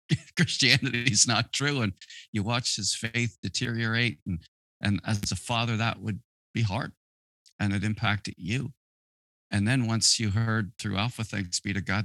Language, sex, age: English, male, 40-59